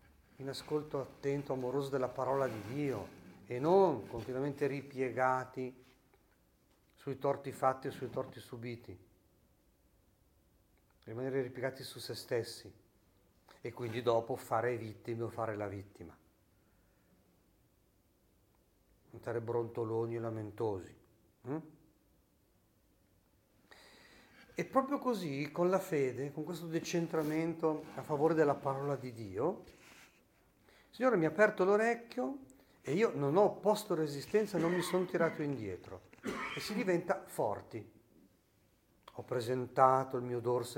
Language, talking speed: Italian, 115 wpm